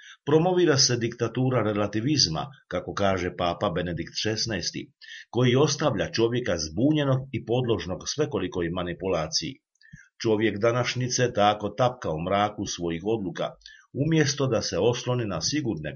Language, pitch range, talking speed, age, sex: Croatian, 95-130 Hz, 115 wpm, 50-69, male